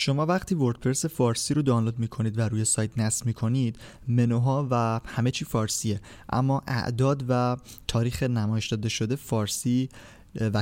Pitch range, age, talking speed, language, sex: 110-130 Hz, 20-39, 145 wpm, Persian, male